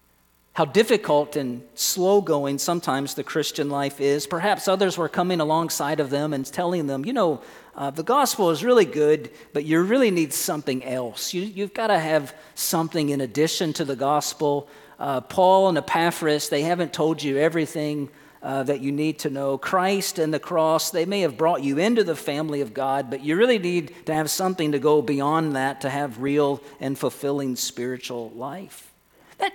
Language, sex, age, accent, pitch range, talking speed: English, male, 40-59, American, 125-160 Hz, 185 wpm